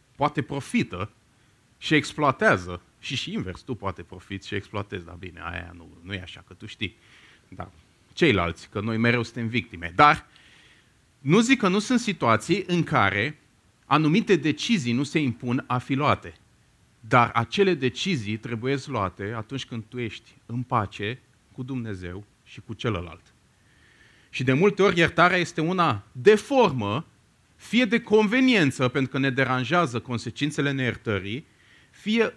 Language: Romanian